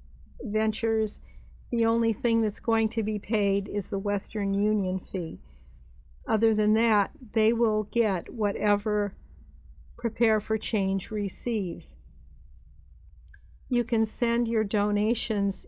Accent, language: American, English